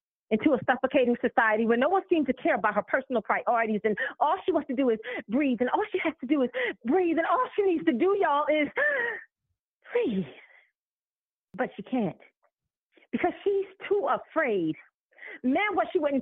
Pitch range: 235-320 Hz